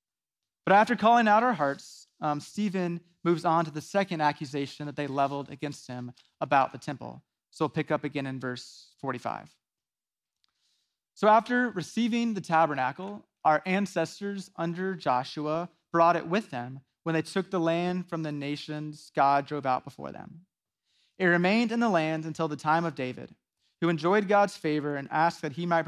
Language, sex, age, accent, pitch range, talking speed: English, male, 30-49, American, 145-180 Hz, 175 wpm